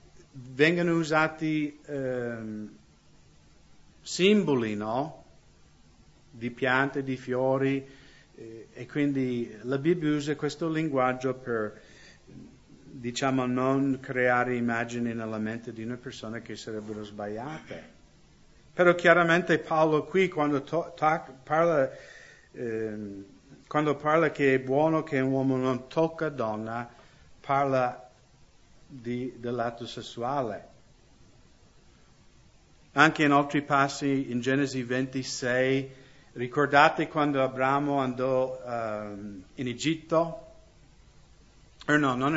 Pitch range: 120-150 Hz